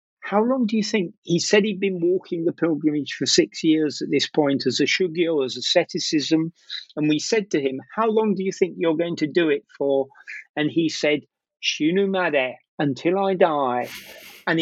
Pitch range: 150-190 Hz